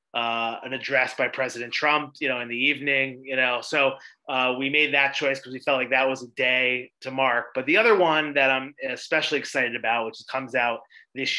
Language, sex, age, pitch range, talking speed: English, male, 30-49, 125-155 Hz, 220 wpm